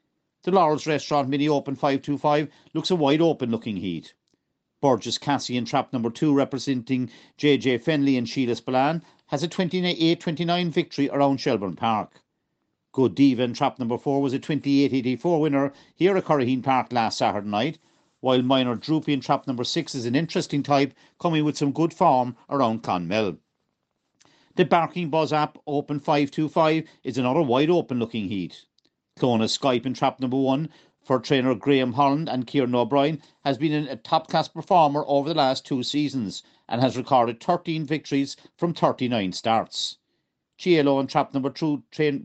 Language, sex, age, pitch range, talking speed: English, male, 50-69, 130-155 Hz, 165 wpm